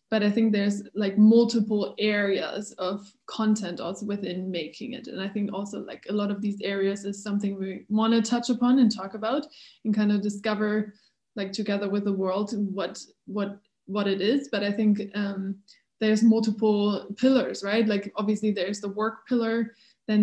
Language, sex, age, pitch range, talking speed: English, female, 20-39, 205-225 Hz, 185 wpm